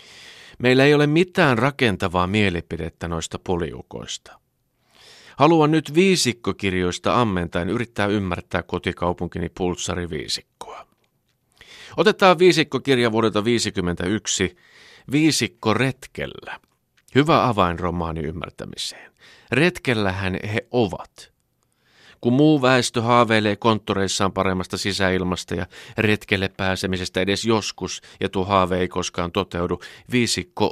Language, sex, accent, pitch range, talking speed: Finnish, male, native, 90-125 Hz, 90 wpm